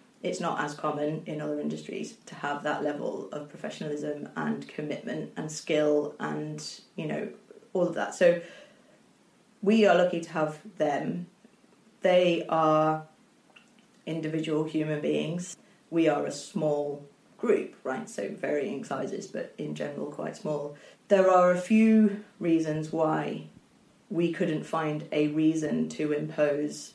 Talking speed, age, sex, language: 140 wpm, 30-49, female, English